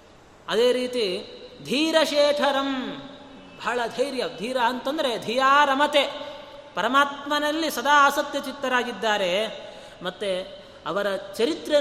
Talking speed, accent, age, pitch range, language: 85 wpm, native, 30-49, 215-280 Hz, Kannada